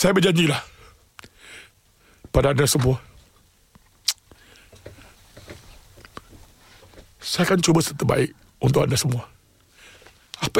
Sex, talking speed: male, 85 wpm